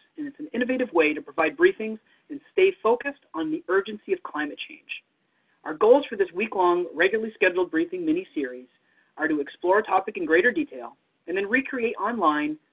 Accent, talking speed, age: American, 180 wpm, 30-49